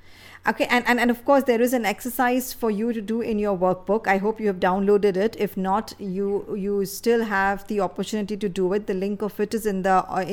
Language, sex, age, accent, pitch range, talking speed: English, female, 50-69, Indian, 185-220 Hz, 245 wpm